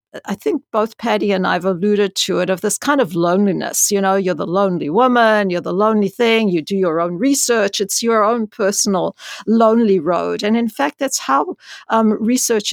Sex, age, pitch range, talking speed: female, 50-69, 190-235 Hz, 205 wpm